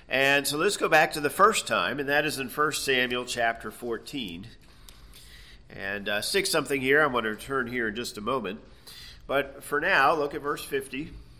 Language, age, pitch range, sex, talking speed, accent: English, 40-59, 110-140 Hz, male, 200 wpm, American